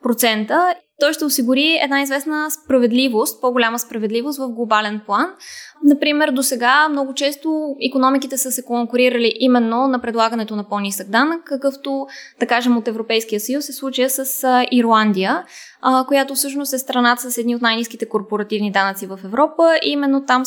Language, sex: Bulgarian, female